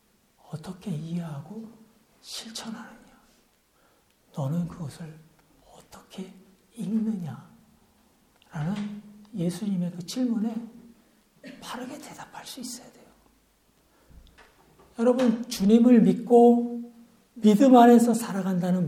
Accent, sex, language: native, male, Korean